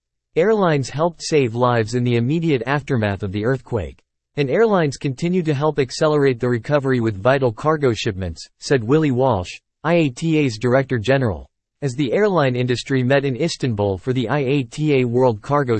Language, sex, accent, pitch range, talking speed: English, male, American, 115-150 Hz, 155 wpm